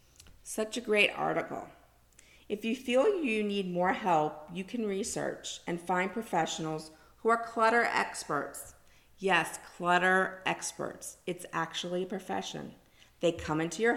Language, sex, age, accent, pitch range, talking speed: English, female, 40-59, American, 145-185 Hz, 135 wpm